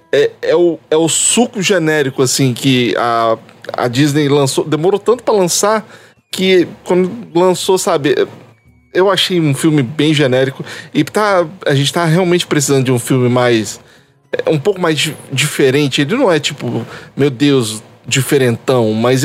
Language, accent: Portuguese, Brazilian